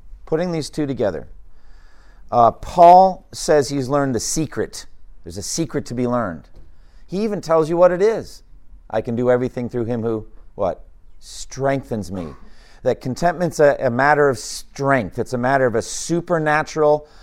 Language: English